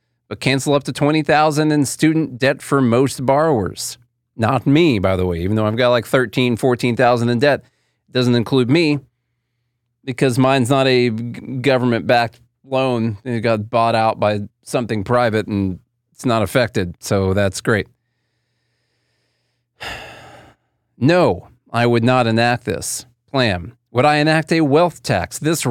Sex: male